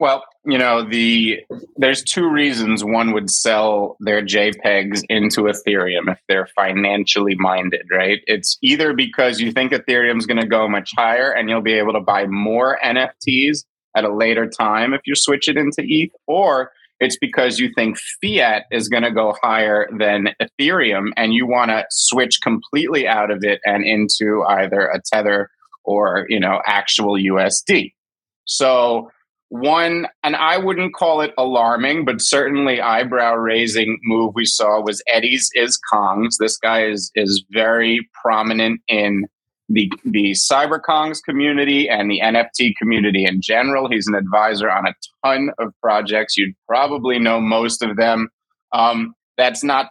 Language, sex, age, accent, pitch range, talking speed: English, male, 30-49, American, 105-130 Hz, 160 wpm